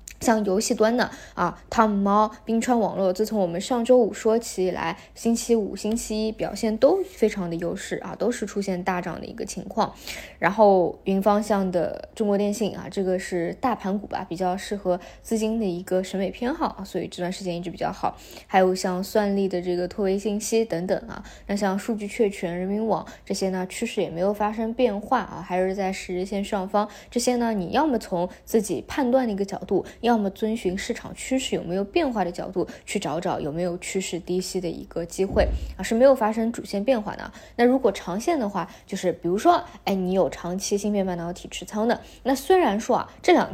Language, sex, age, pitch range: Chinese, female, 20-39, 185-225 Hz